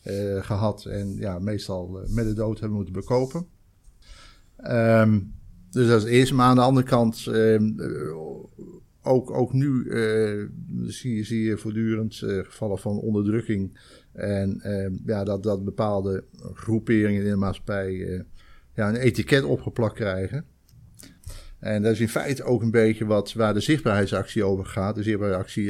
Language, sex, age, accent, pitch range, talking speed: Dutch, male, 50-69, Dutch, 100-115 Hz, 160 wpm